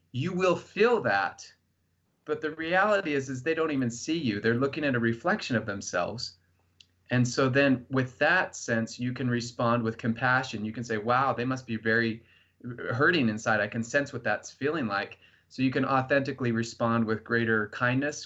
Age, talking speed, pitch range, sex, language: 30-49, 185 wpm, 110-130 Hz, male, English